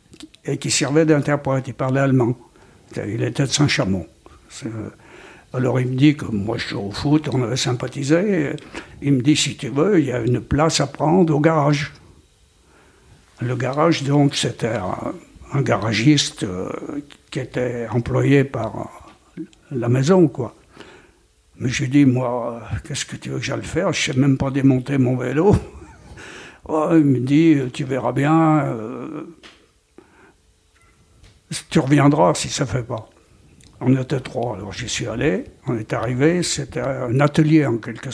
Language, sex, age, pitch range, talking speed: French, male, 60-79, 125-150 Hz, 160 wpm